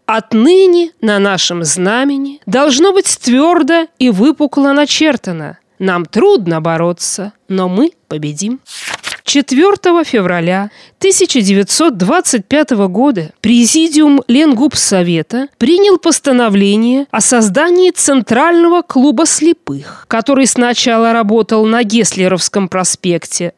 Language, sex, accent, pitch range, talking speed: Russian, female, native, 195-300 Hz, 90 wpm